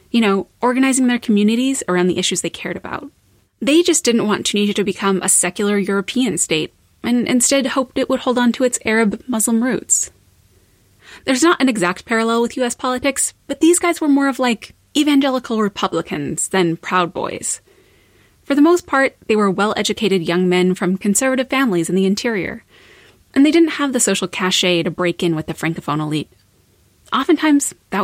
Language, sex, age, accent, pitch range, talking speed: English, female, 20-39, American, 180-260 Hz, 180 wpm